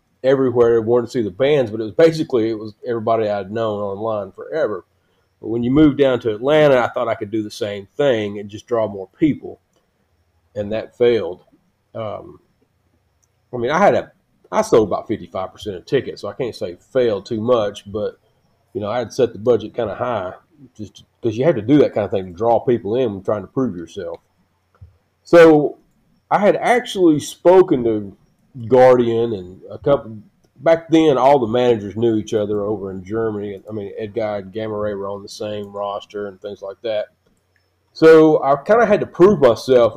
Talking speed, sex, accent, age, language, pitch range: 200 wpm, male, American, 40-59, English, 100-130 Hz